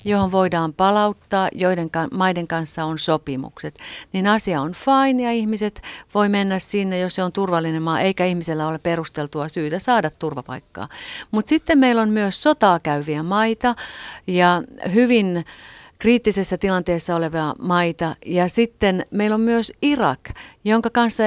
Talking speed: 145 wpm